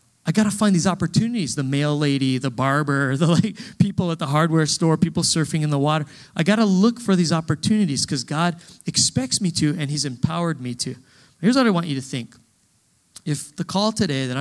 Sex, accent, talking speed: male, American, 215 wpm